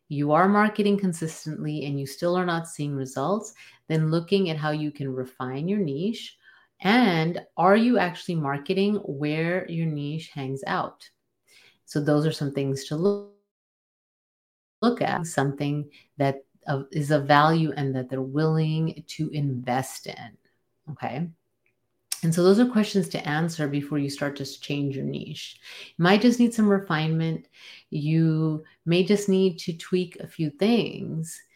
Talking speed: 150 wpm